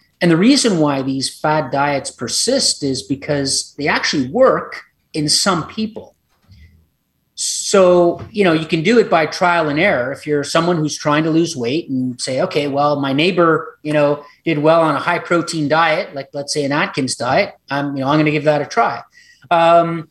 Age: 40-59